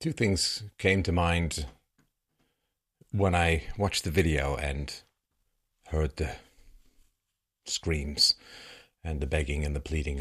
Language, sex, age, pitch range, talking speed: English, male, 40-59, 75-85 Hz, 120 wpm